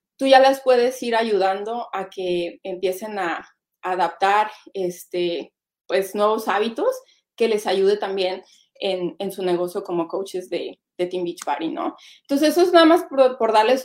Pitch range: 210-270 Hz